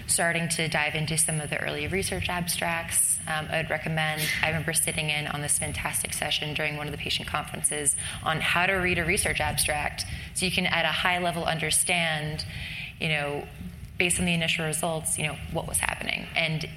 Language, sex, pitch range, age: English, female, 150-165 Hz, 20-39